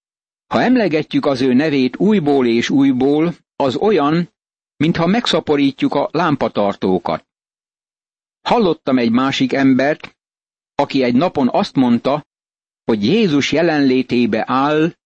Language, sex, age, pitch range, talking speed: Hungarian, male, 60-79, 125-155 Hz, 110 wpm